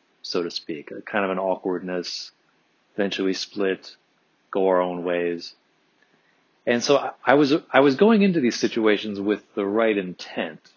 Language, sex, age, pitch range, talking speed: English, male, 30-49, 95-115 Hz, 160 wpm